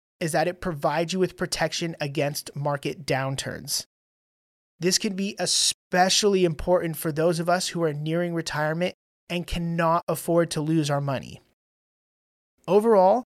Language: English